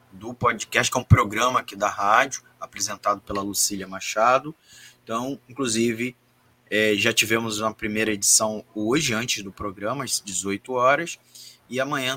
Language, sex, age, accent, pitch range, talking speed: Portuguese, male, 20-39, Brazilian, 105-125 Hz, 145 wpm